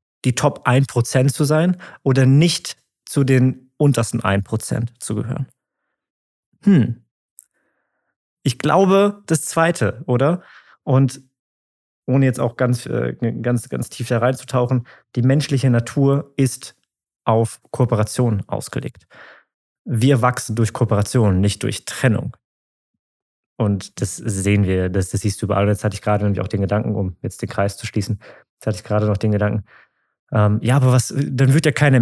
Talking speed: 155 wpm